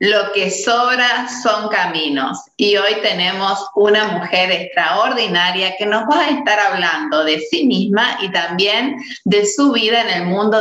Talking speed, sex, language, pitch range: 160 wpm, female, Spanish, 185-260 Hz